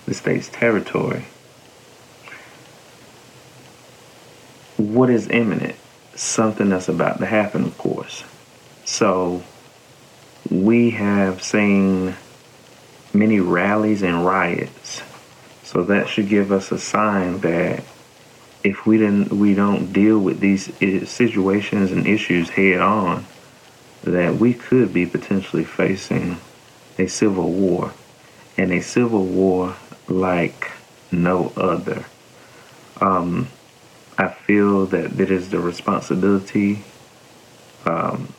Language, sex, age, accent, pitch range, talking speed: English, male, 30-49, American, 90-105 Hz, 105 wpm